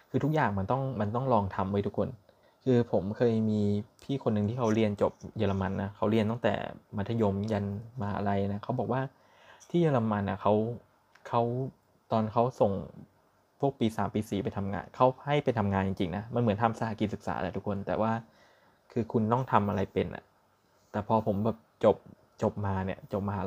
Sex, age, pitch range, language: male, 20-39, 100-115 Hz, Thai